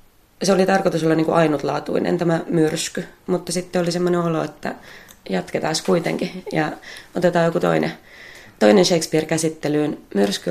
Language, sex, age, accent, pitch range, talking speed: Finnish, female, 20-39, native, 140-165 Hz, 135 wpm